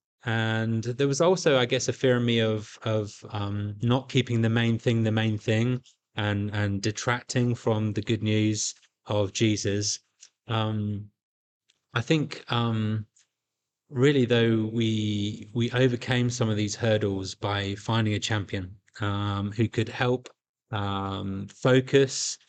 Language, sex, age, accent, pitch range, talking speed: English, male, 20-39, British, 105-120 Hz, 140 wpm